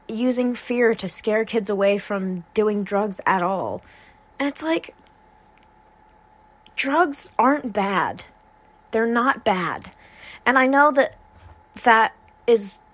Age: 20-39